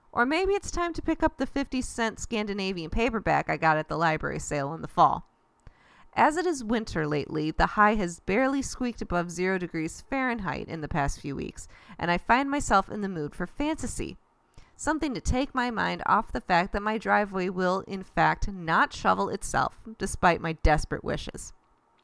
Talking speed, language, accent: 190 wpm, English, American